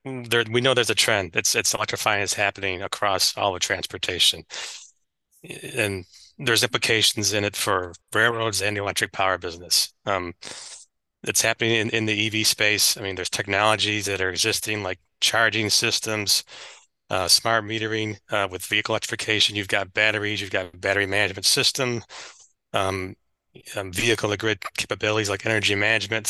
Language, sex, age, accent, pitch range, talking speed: English, male, 30-49, American, 100-110 Hz, 150 wpm